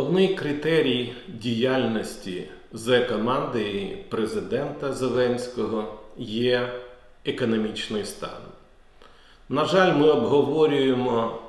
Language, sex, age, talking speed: Ukrainian, male, 50-69, 75 wpm